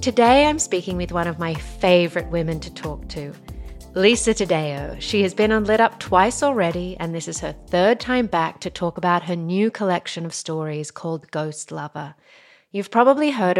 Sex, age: female, 30-49